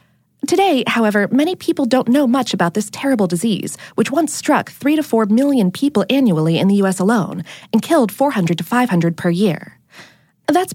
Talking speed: 180 wpm